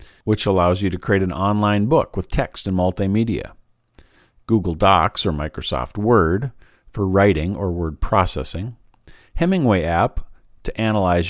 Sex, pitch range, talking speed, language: male, 90-110 Hz, 140 wpm, English